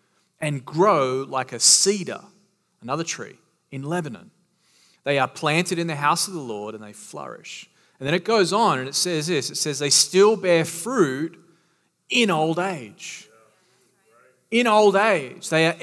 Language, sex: English, male